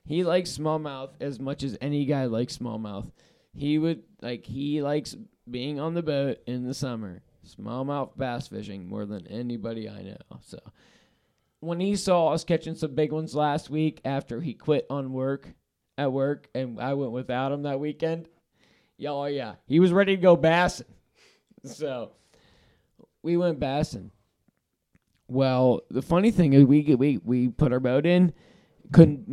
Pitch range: 125-155 Hz